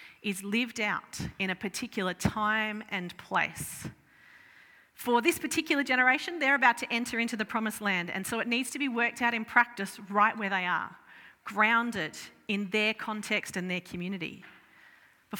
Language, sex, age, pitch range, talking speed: English, female, 40-59, 185-240 Hz, 170 wpm